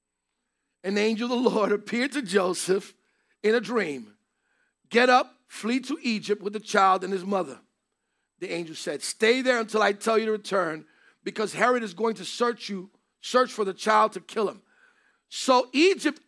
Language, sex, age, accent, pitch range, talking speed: English, male, 50-69, American, 195-265 Hz, 180 wpm